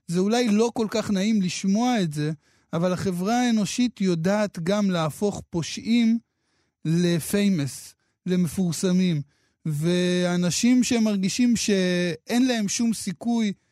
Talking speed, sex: 105 wpm, male